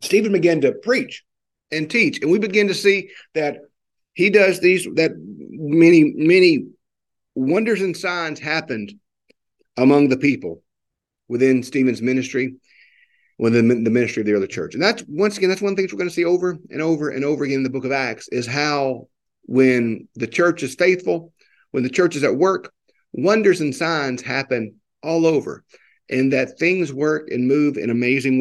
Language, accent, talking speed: English, American, 175 wpm